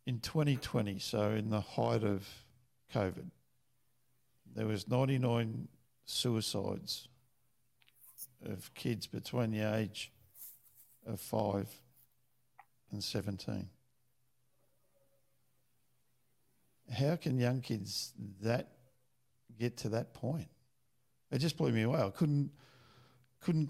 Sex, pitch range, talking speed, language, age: male, 115-130 Hz, 95 wpm, English, 50-69